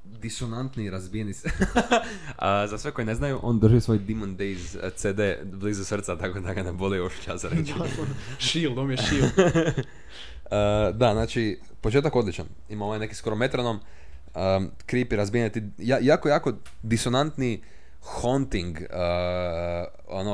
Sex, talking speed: male, 135 wpm